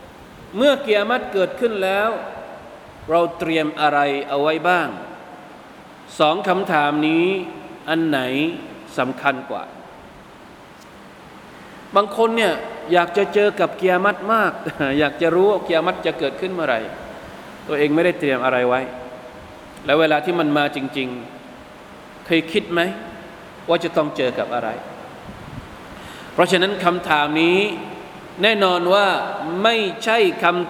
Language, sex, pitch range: Thai, male, 150-195 Hz